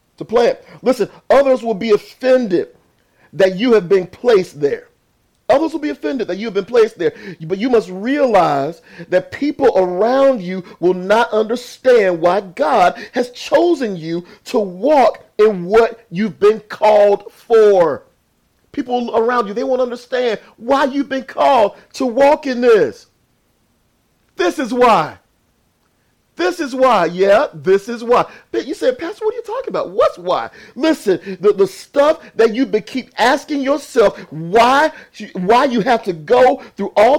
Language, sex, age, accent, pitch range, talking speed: English, male, 40-59, American, 210-275 Hz, 160 wpm